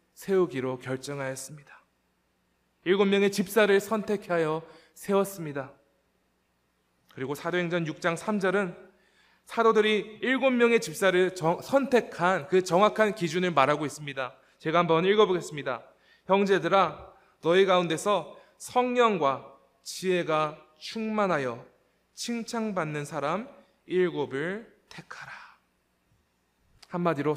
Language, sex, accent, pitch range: Korean, male, native, 150-205 Hz